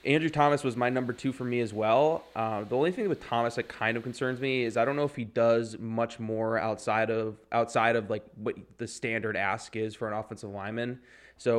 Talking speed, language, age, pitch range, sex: 235 wpm, English, 20-39, 110-120 Hz, male